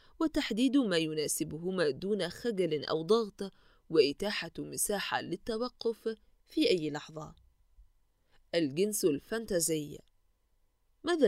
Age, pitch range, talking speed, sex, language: 20-39, 165-240 Hz, 85 wpm, female, Arabic